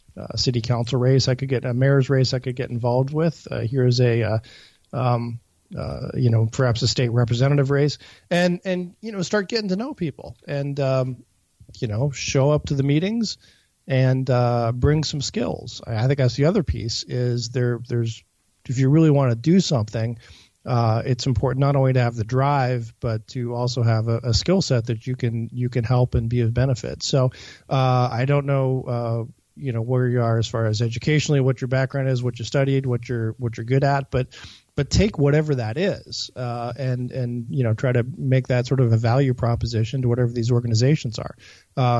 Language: English